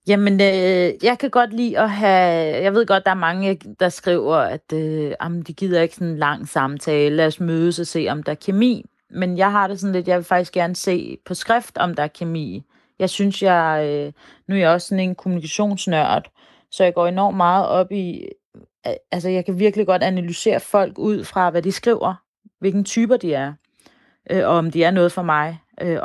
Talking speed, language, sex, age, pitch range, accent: 225 wpm, Danish, female, 30-49, 170-205 Hz, native